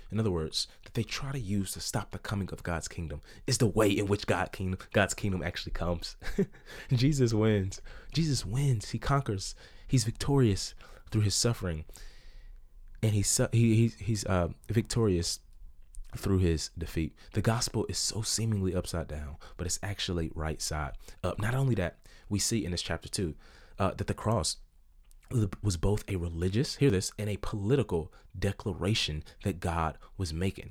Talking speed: 170 wpm